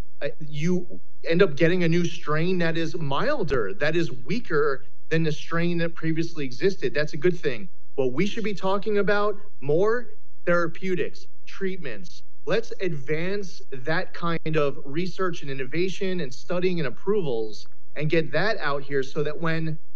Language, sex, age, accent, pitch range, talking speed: English, male, 30-49, American, 145-190 Hz, 155 wpm